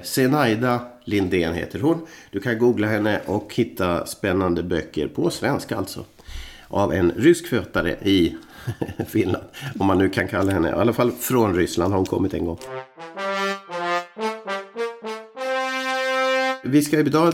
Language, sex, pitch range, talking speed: Swedish, male, 100-150 Hz, 135 wpm